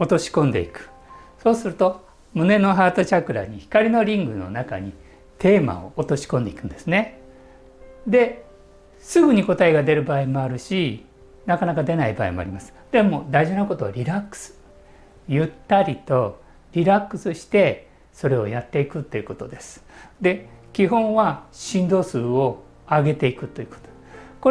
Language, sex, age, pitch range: Japanese, male, 60-79, 115-190 Hz